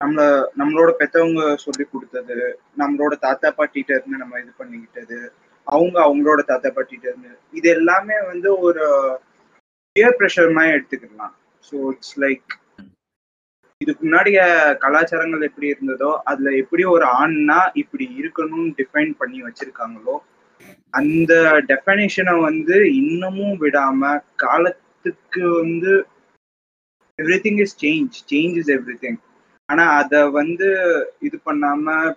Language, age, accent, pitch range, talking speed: Tamil, 20-39, native, 140-205 Hz, 110 wpm